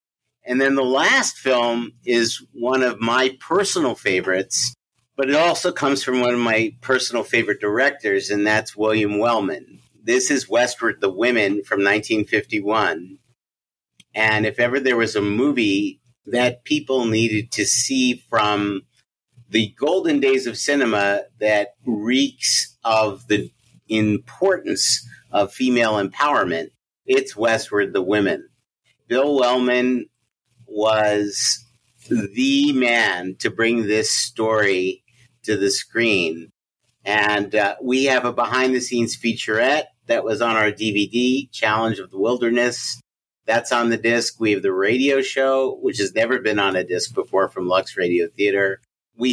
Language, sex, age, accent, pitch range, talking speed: English, male, 50-69, American, 105-130 Hz, 135 wpm